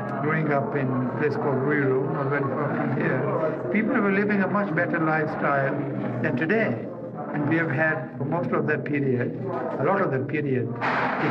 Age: 60-79